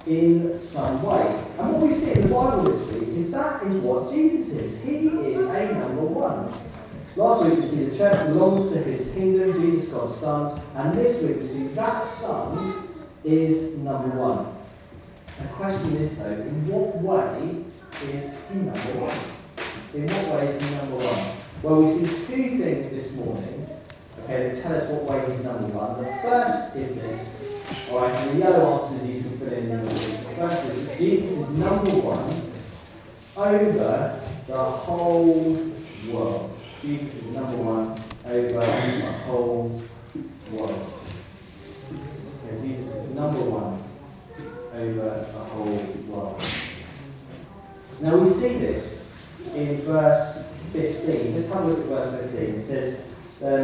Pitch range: 125-170 Hz